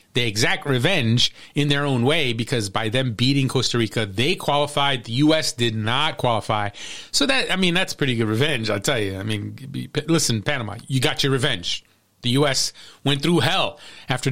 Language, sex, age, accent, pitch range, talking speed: English, male, 30-49, American, 110-155 Hz, 190 wpm